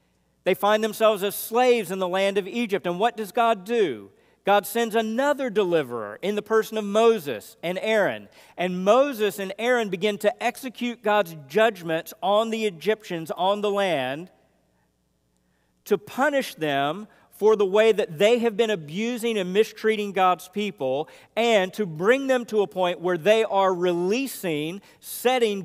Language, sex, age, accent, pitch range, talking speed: English, male, 50-69, American, 155-220 Hz, 160 wpm